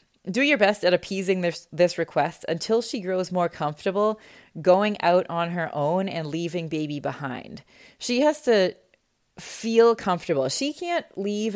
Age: 20-39